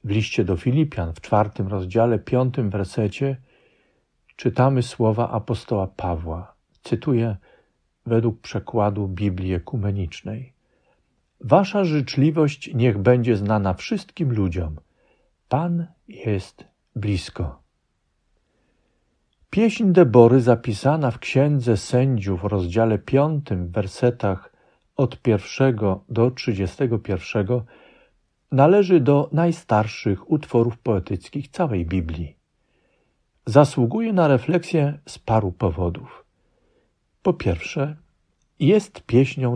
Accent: native